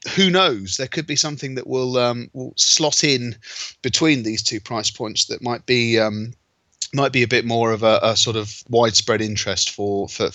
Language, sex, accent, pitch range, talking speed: English, male, British, 110-145 Hz, 195 wpm